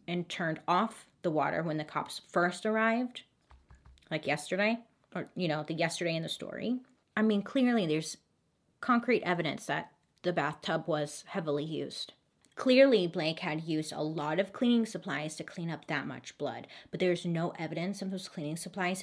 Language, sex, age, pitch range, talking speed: English, female, 30-49, 150-190 Hz, 175 wpm